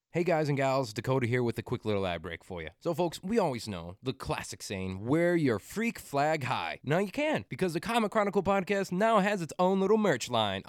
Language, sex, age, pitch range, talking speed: English, male, 20-39, 115-165 Hz, 235 wpm